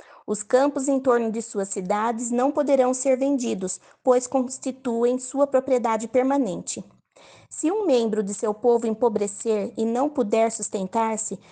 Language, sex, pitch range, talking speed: Portuguese, female, 215-265 Hz, 140 wpm